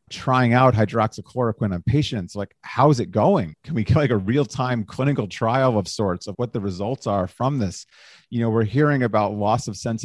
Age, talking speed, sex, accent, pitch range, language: 40-59, 210 wpm, male, American, 105-135 Hz, English